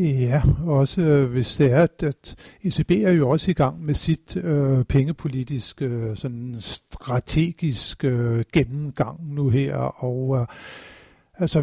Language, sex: Danish, male